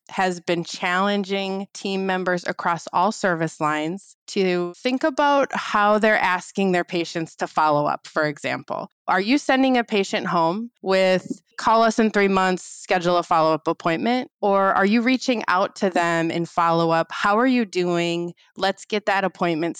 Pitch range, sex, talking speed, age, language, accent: 175-215 Hz, female, 165 wpm, 20-39, English, American